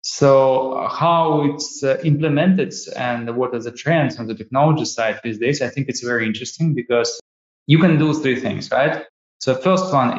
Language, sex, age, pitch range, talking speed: English, male, 20-39, 110-135 Hz, 175 wpm